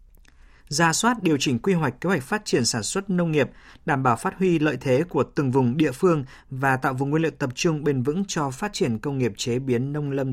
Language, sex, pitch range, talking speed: Vietnamese, male, 125-170 Hz, 250 wpm